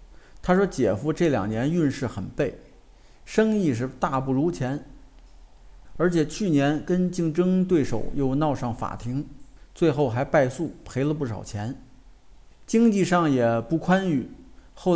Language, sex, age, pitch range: Chinese, male, 50-69, 115-175 Hz